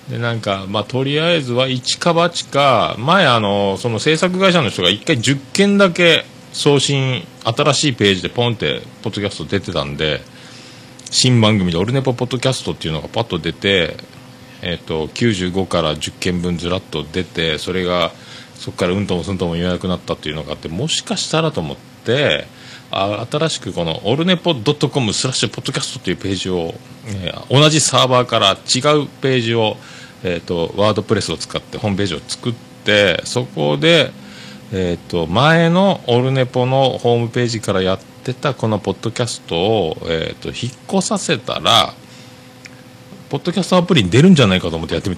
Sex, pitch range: male, 95-135 Hz